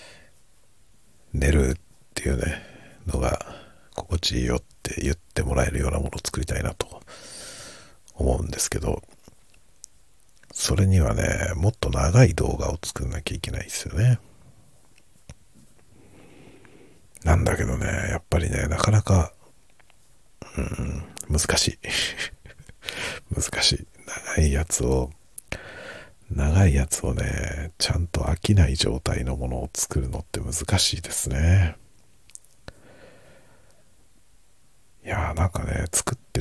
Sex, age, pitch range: male, 60-79, 70-100 Hz